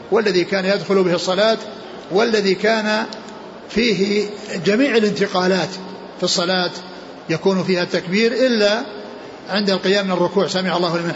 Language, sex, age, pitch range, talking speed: Arabic, male, 60-79, 180-220 Hz, 125 wpm